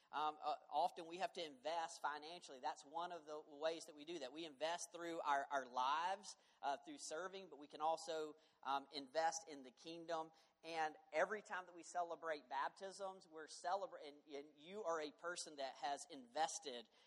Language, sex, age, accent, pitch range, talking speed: English, male, 40-59, American, 150-185 Hz, 185 wpm